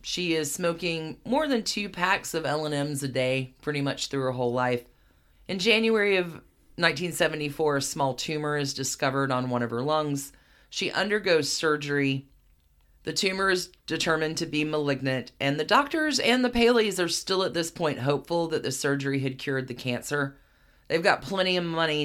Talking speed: 180 wpm